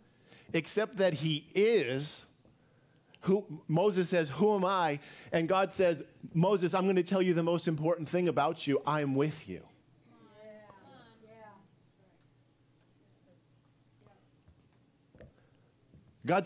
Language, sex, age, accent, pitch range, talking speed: English, male, 40-59, American, 145-195 Hz, 110 wpm